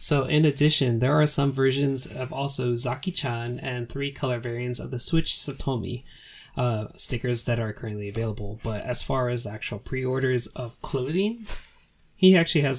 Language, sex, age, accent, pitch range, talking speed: English, male, 20-39, American, 115-140 Hz, 170 wpm